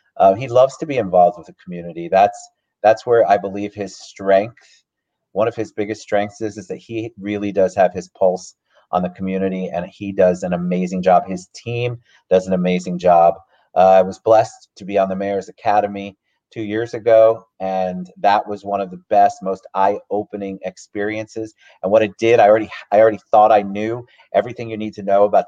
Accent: American